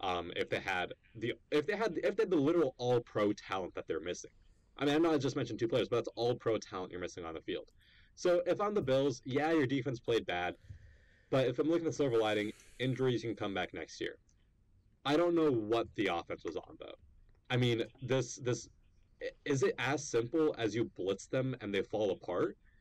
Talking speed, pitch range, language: 225 wpm, 100-150 Hz, English